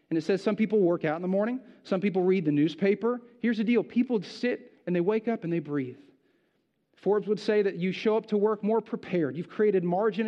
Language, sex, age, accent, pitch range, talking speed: English, male, 40-59, American, 150-205 Hz, 240 wpm